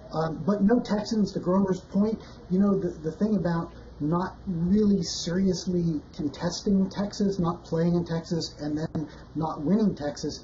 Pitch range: 150-180 Hz